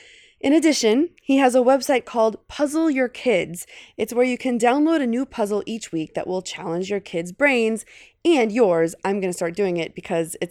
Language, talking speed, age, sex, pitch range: English, 205 wpm, 20-39, female, 175-265 Hz